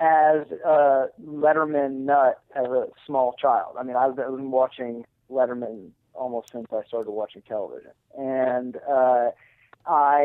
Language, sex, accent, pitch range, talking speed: English, male, American, 130-160 Hz, 135 wpm